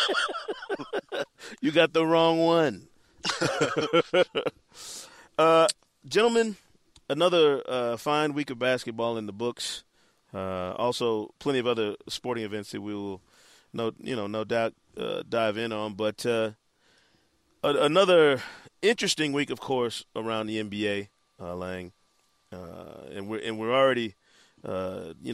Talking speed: 135 wpm